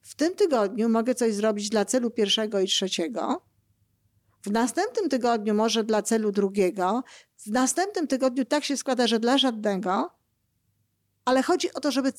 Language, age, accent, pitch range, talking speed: Polish, 50-69, native, 210-265 Hz, 160 wpm